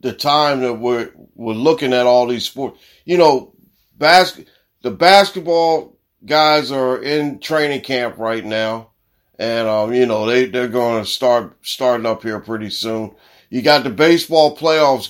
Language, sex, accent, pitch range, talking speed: English, male, American, 115-155 Hz, 165 wpm